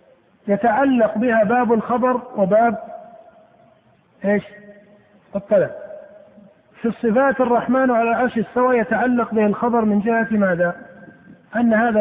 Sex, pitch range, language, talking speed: male, 200-245 Hz, Arabic, 105 wpm